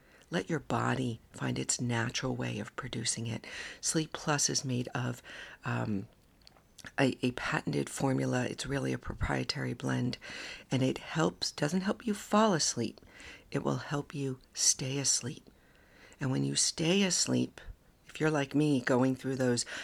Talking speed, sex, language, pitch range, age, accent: 155 wpm, female, English, 115-135 Hz, 50-69, American